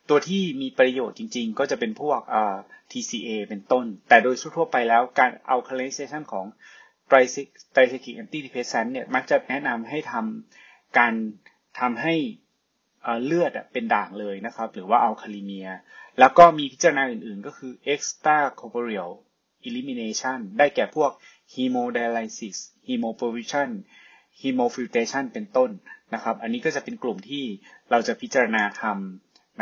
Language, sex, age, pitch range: Thai, male, 20-39, 115-190 Hz